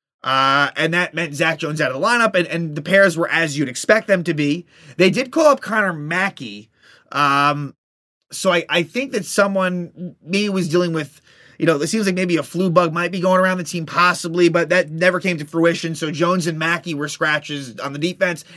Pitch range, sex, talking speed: 150-185 Hz, male, 225 wpm